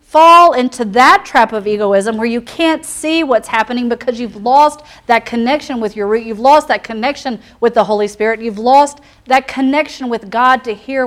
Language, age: English, 40-59